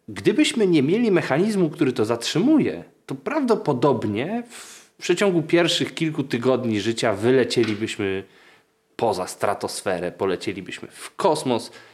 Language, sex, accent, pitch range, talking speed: Polish, male, native, 115-190 Hz, 105 wpm